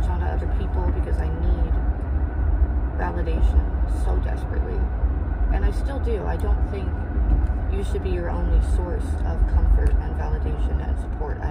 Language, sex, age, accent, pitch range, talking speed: English, female, 20-39, American, 70-80 Hz, 155 wpm